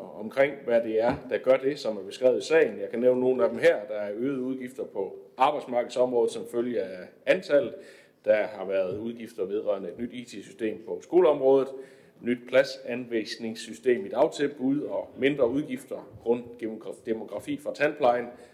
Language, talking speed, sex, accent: Danish, 160 wpm, male, native